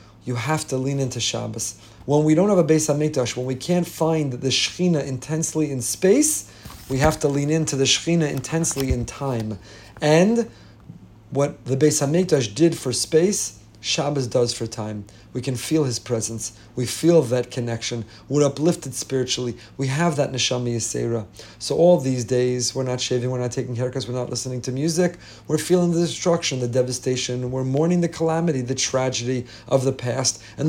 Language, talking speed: English, 180 wpm